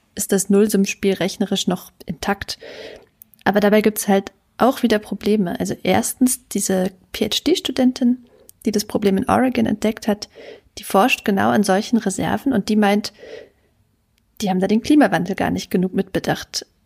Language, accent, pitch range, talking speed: German, German, 200-255 Hz, 155 wpm